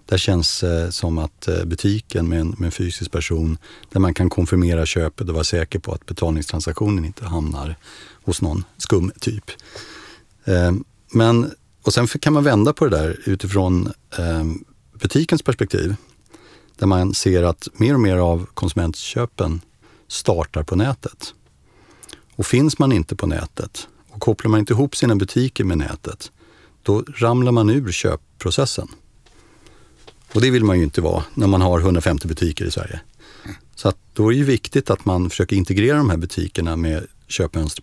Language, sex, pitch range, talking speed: Swedish, male, 85-110 Hz, 160 wpm